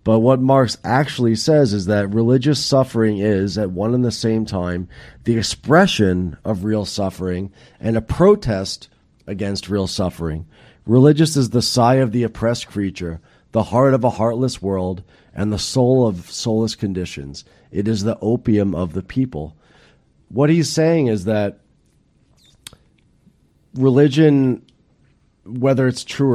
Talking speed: 145 wpm